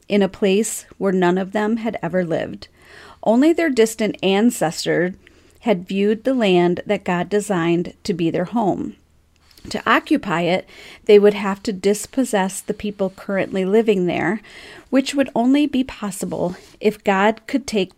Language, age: English, 40-59